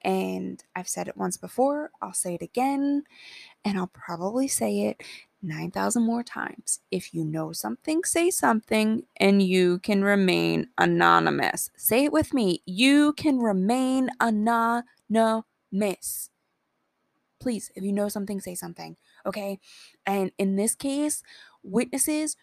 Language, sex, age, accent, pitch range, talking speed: English, female, 20-39, American, 185-265 Hz, 135 wpm